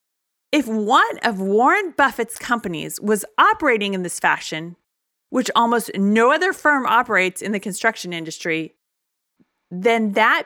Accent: American